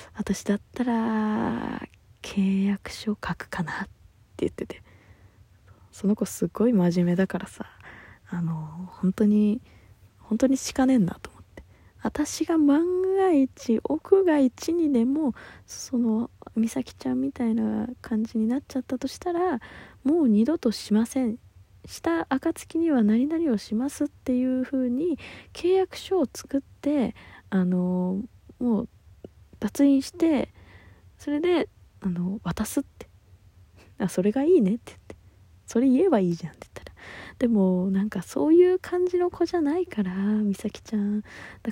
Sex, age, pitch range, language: female, 20-39, 185-270 Hz, Japanese